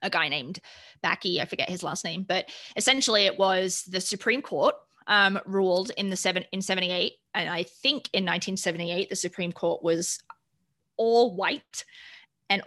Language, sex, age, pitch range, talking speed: English, female, 20-39, 175-210 Hz, 165 wpm